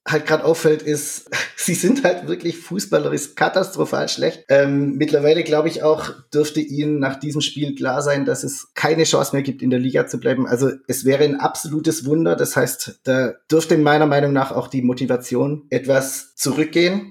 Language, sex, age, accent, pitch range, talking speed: English, male, 20-39, German, 135-155 Hz, 180 wpm